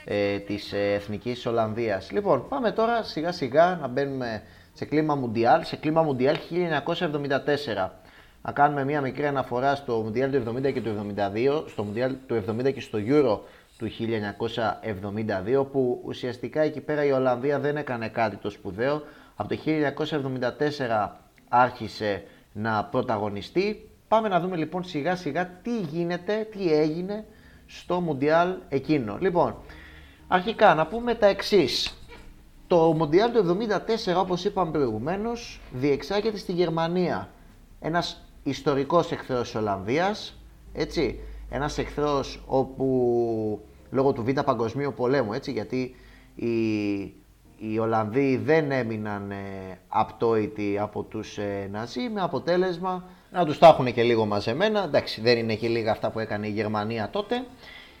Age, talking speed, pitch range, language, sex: 30-49, 135 wpm, 110-165 Hz, Greek, male